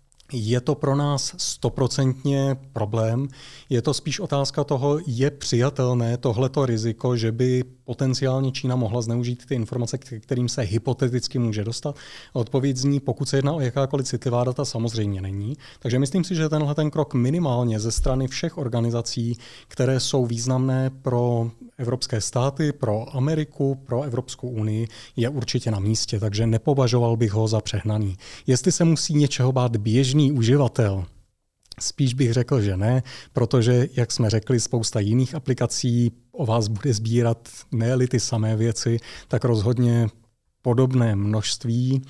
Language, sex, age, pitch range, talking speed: Czech, male, 30-49, 115-135 Hz, 145 wpm